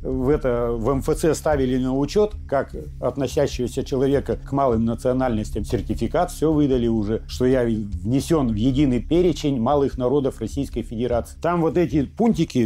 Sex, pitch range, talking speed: male, 115-155 Hz, 140 wpm